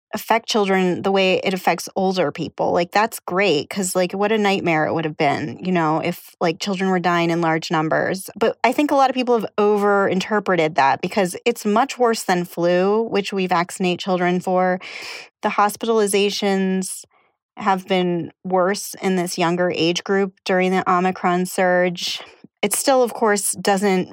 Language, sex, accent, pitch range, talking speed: English, female, American, 180-210 Hz, 175 wpm